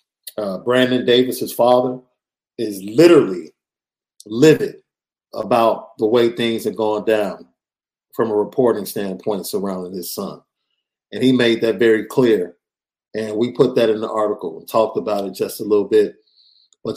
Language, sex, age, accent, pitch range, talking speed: English, male, 50-69, American, 110-130 Hz, 155 wpm